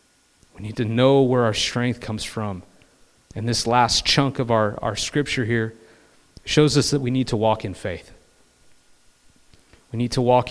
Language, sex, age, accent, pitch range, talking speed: English, male, 30-49, American, 105-145 Hz, 175 wpm